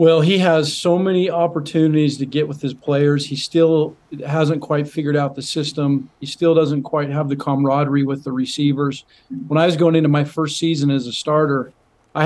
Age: 40-59